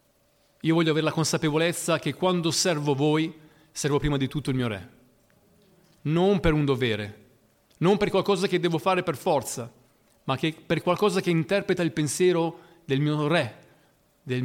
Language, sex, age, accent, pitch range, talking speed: Italian, male, 40-59, native, 125-165 Hz, 160 wpm